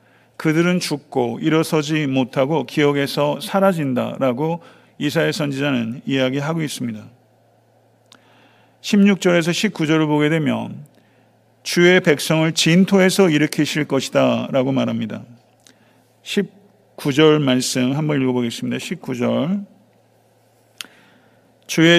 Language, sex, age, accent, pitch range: Korean, male, 40-59, native, 130-165 Hz